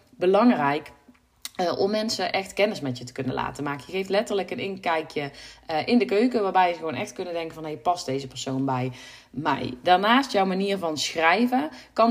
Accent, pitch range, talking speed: Dutch, 145-200 Hz, 200 wpm